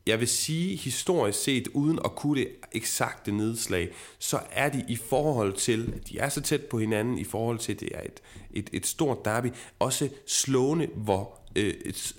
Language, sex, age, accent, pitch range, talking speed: Danish, male, 30-49, native, 100-130 Hz, 195 wpm